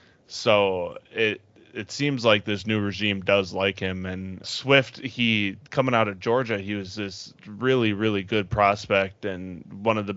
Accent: American